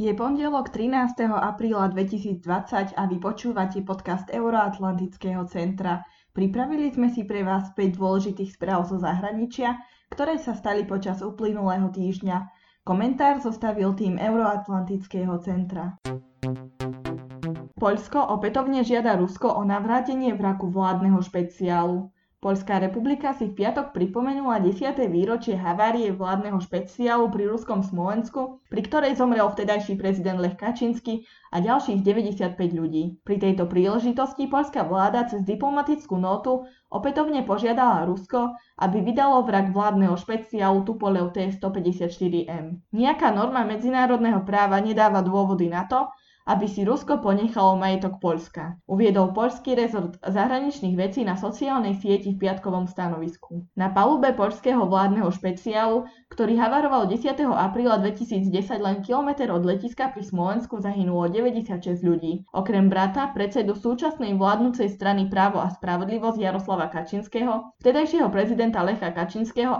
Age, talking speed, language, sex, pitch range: 20-39, 125 wpm, Slovak, female, 190-235 Hz